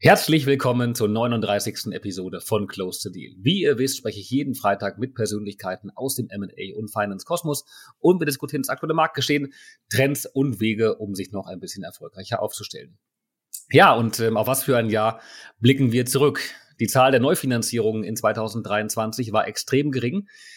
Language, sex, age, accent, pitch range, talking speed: German, male, 30-49, German, 110-140 Hz, 170 wpm